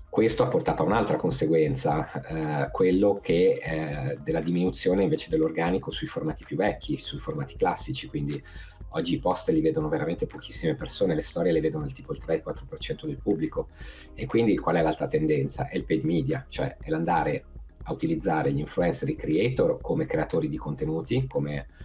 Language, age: Italian, 50-69